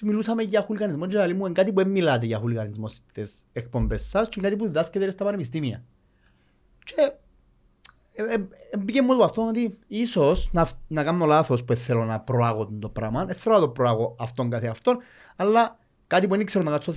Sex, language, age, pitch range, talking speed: male, Greek, 30-49, 120-185 Hz, 175 wpm